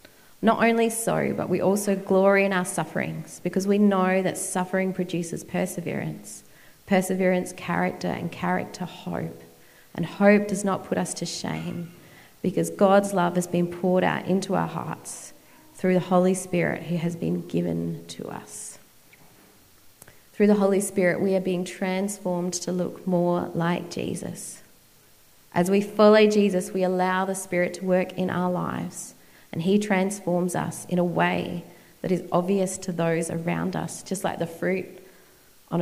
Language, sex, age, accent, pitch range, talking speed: English, female, 30-49, Australian, 170-195 Hz, 155 wpm